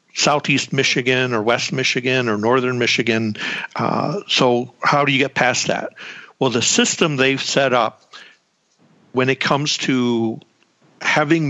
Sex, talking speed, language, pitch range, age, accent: male, 140 wpm, English, 115-135 Hz, 50-69, American